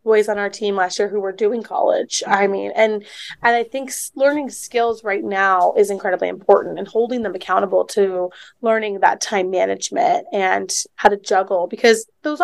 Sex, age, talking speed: female, 20-39, 185 wpm